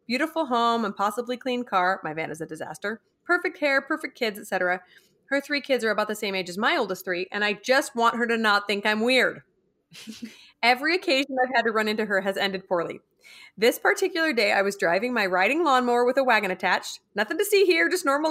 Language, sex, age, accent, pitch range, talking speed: English, female, 30-49, American, 190-260 Hz, 225 wpm